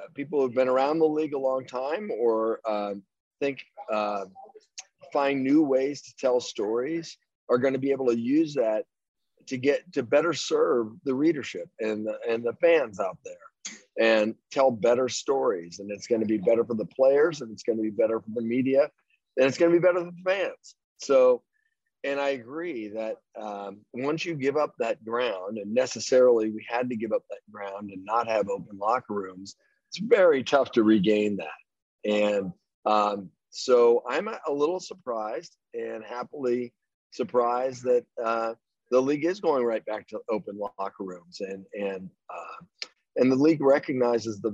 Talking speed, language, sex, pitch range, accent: 180 wpm, English, male, 110-140 Hz, American